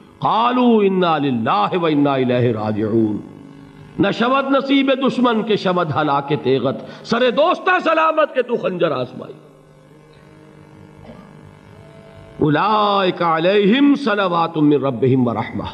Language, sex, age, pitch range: Urdu, male, 50-69, 160-240 Hz